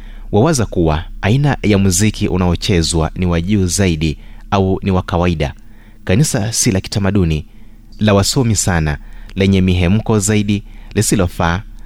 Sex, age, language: male, 30-49, Swahili